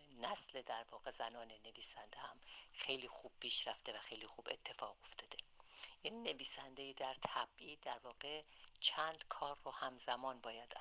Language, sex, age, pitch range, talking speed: Persian, female, 50-69, 115-140 Hz, 140 wpm